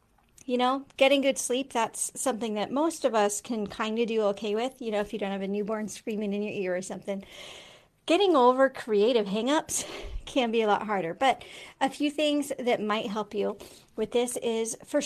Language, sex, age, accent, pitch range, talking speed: English, female, 40-59, American, 205-255 Hz, 205 wpm